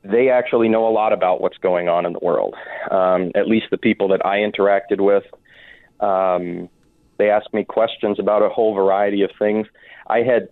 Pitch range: 95-105 Hz